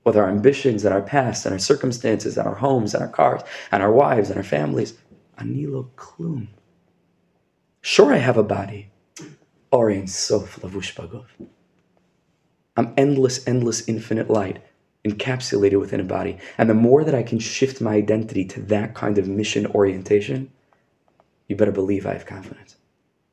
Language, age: English, 20-39